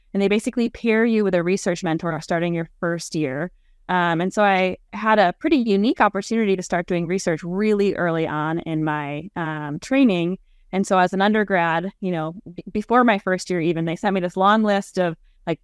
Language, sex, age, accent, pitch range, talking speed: English, female, 20-39, American, 170-220 Hz, 205 wpm